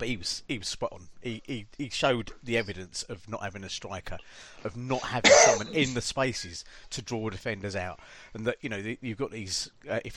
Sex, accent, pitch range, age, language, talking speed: male, British, 100-125 Hz, 40-59, English, 225 wpm